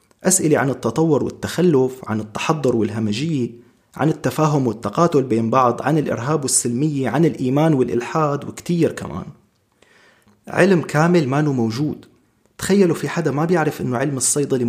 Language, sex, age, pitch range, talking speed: Arabic, male, 30-49, 120-165 Hz, 130 wpm